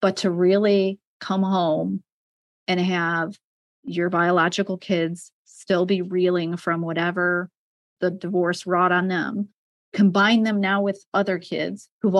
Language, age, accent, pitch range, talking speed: English, 30-49, American, 170-195 Hz, 135 wpm